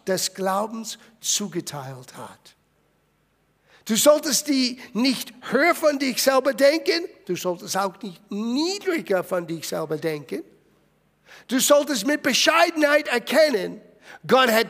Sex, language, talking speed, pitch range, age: male, German, 120 wpm, 210-290 Hz, 50-69